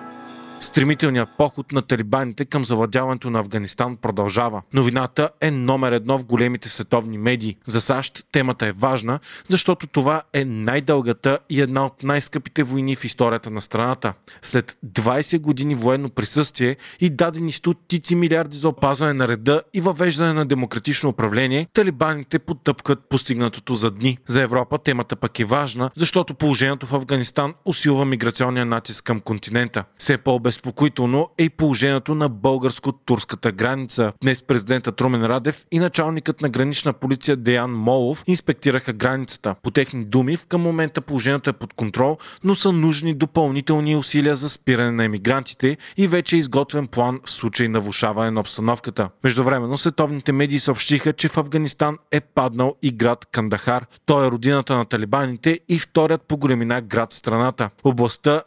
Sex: male